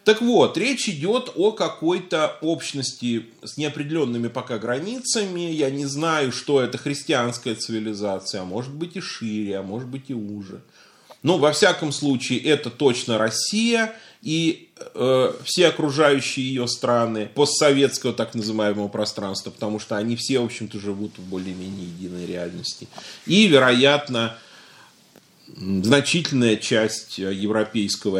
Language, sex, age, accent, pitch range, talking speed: Russian, male, 30-49, native, 110-165 Hz, 130 wpm